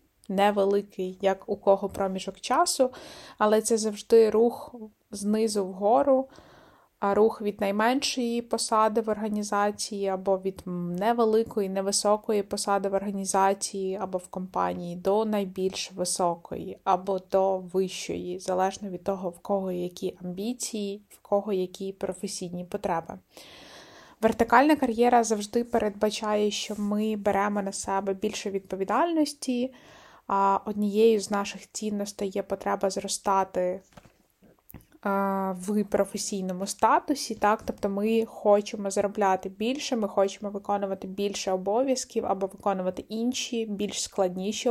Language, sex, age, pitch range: Ukrainian, female, 20-39, 195-225 Hz